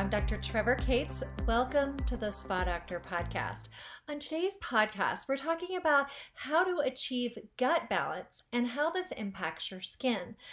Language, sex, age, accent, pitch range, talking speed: English, female, 40-59, American, 215-270 Hz, 155 wpm